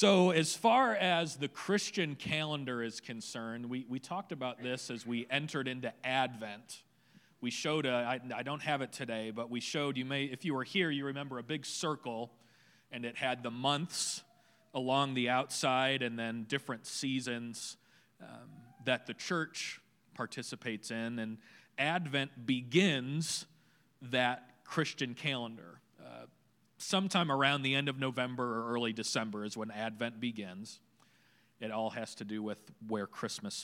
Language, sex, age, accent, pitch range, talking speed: English, male, 40-59, American, 120-155 Hz, 155 wpm